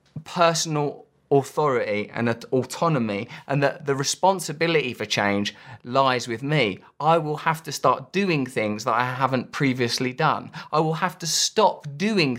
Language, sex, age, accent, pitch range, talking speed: English, male, 20-39, British, 110-150 Hz, 150 wpm